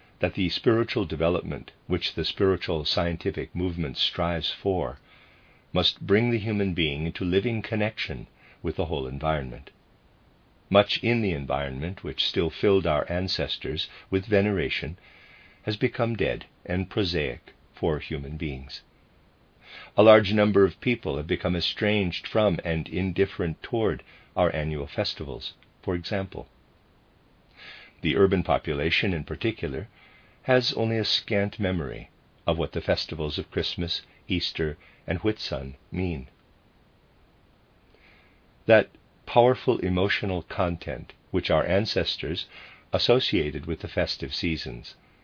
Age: 50-69